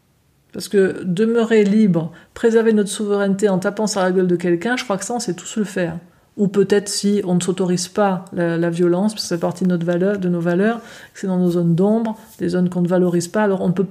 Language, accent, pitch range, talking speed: French, French, 180-215 Hz, 245 wpm